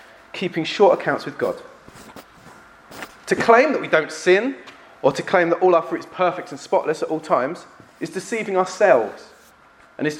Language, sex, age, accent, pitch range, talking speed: English, male, 30-49, British, 140-185 Hz, 175 wpm